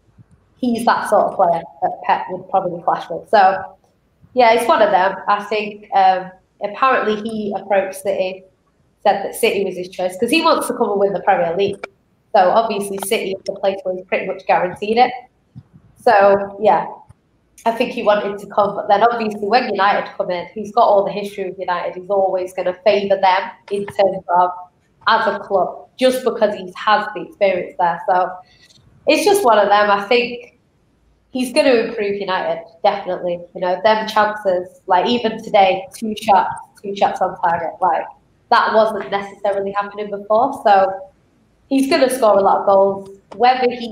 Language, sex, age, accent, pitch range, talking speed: English, female, 20-39, British, 190-220 Hz, 185 wpm